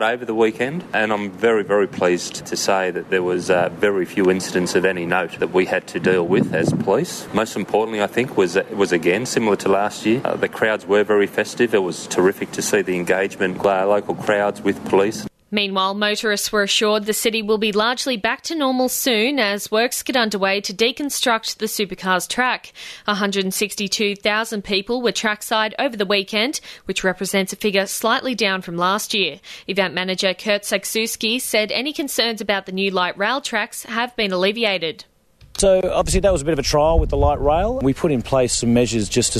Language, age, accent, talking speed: English, 30-49, Australian, 205 wpm